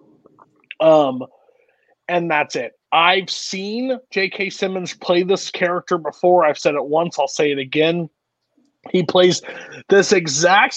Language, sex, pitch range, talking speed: English, male, 150-200 Hz, 135 wpm